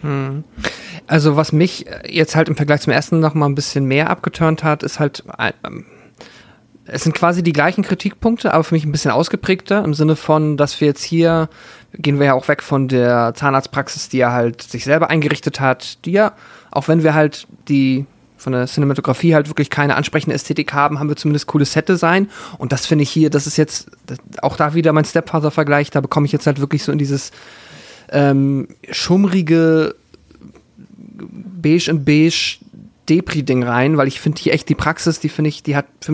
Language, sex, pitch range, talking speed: German, male, 145-170 Hz, 195 wpm